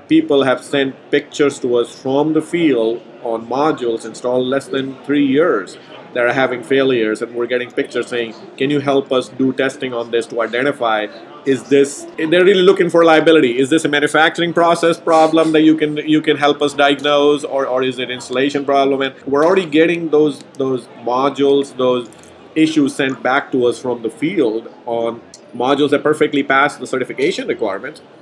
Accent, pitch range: Indian, 125-150 Hz